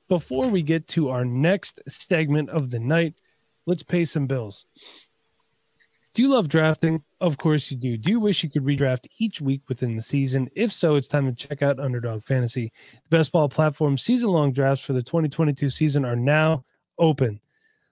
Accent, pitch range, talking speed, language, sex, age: American, 130-165 Hz, 185 wpm, English, male, 30-49